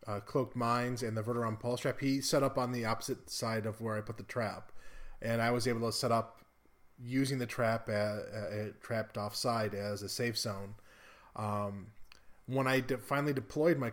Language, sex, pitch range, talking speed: English, male, 110-130 Hz, 190 wpm